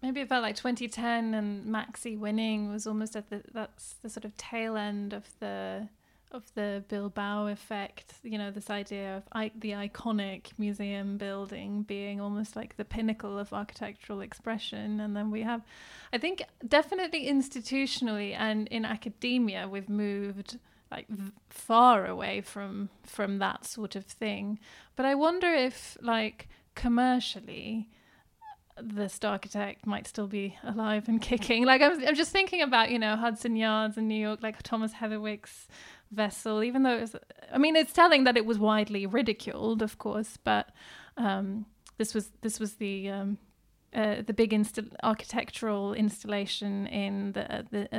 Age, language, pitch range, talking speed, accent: 20-39, English, 205-235 Hz, 160 wpm, British